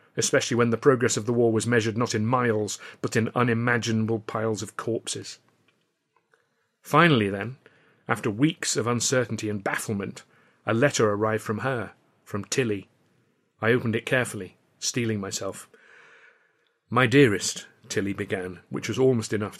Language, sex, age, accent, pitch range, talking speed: English, male, 40-59, British, 110-125 Hz, 145 wpm